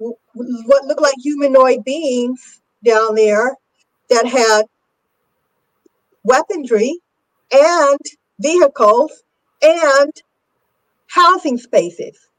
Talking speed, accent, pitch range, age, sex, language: 75 wpm, American, 220-315 Hz, 50-69, female, English